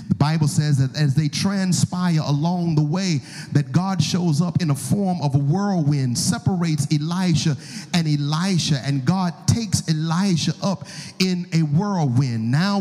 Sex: male